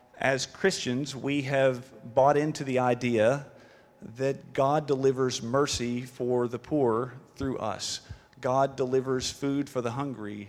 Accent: American